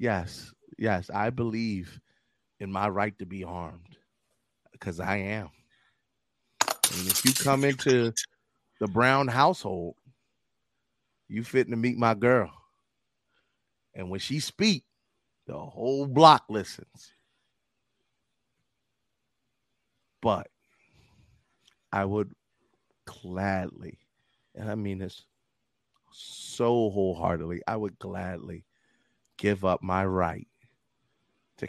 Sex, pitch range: male, 95-125 Hz